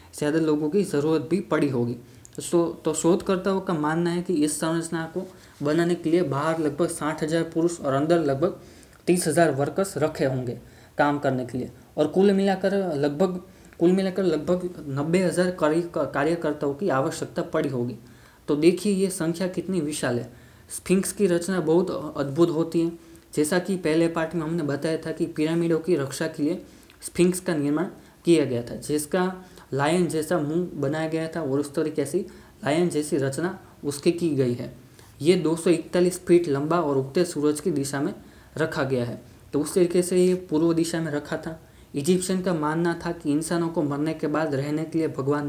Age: 20-39